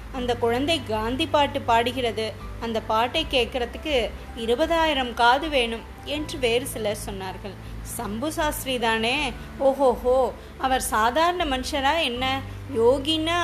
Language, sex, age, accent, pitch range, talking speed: Tamil, female, 20-39, native, 230-290 Hz, 110 wpm